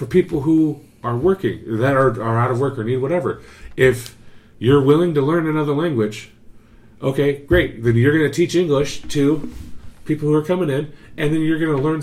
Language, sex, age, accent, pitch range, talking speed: English, male, 30-49, American, 110-145 Hz, 195 wpm